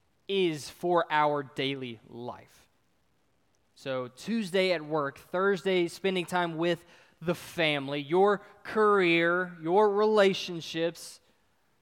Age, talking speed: 20-39, 95 wpm